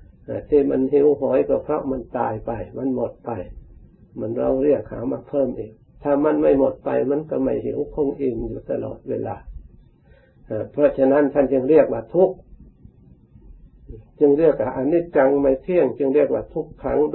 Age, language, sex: 60-79, Thai, male